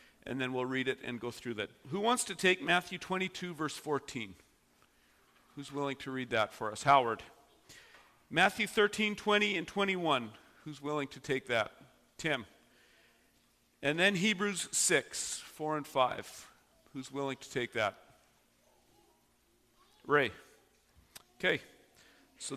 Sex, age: male, 40-59